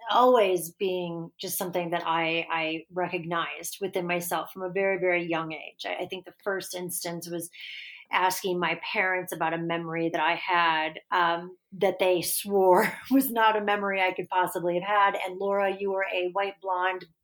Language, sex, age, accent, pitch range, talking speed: English, female, 30-49, American, 175-205 Hz, 180 wpm